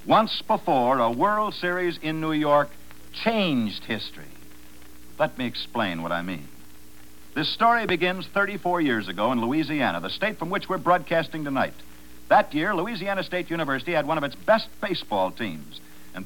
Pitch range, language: 125-195 Hz, English